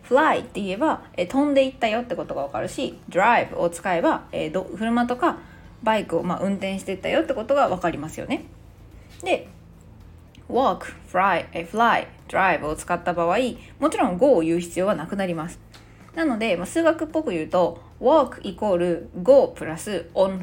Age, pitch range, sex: 20-39, 165-255 Hz, female